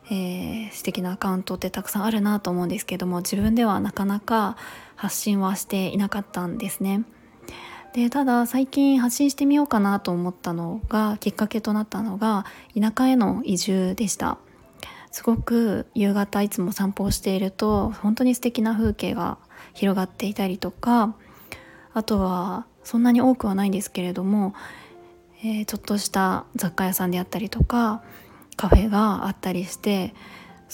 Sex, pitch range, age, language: female, 190-225 Hz, 20-39, Japanese